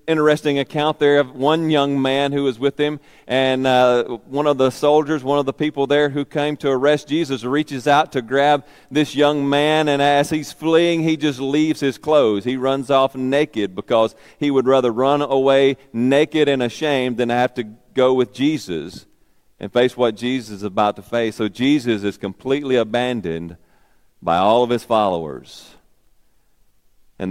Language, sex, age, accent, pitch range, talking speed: English, male, 40-59, American, 110-145 Hz, 180 wpm